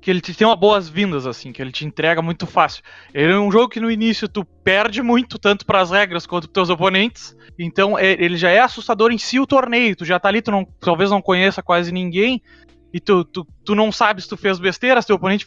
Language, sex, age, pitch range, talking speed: Portuguese, male, 20-39, 185-235 Hz, 245 wpm